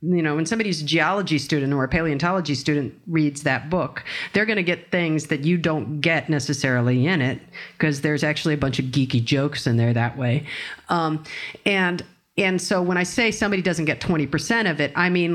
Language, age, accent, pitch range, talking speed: English, 50-69, American, 140-175 Hz, 210 wpm